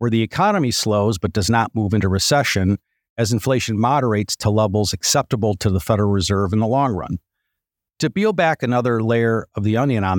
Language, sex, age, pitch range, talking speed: English, male, 50-69, 100-125 Hz, 195 wpm